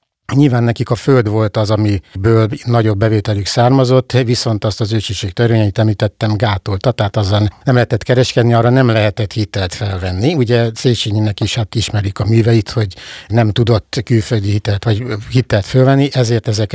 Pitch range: 105-120 Hz